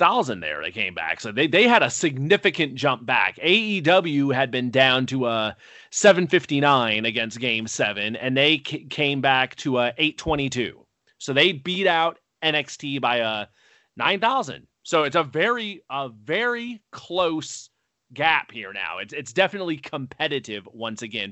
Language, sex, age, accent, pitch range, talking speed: English, male, 30-49, American, 125-175 Hz, 160 wpm